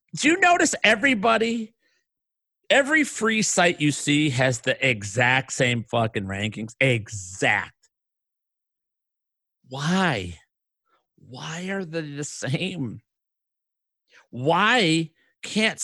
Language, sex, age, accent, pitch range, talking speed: English, male, 50-69, American, 125-185 Hz, 90 wpm